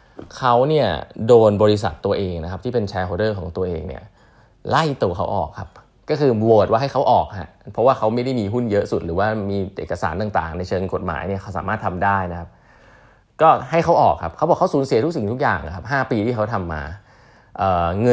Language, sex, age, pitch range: Thai, male, 20-39, 95-120 Hz